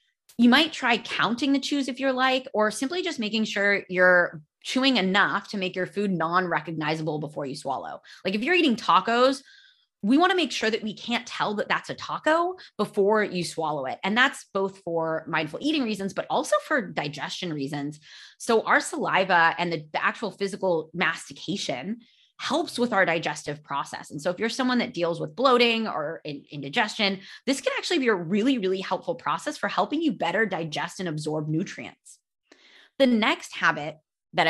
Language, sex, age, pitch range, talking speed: English, female, 20-39, 175-260 Hz, 185 wpm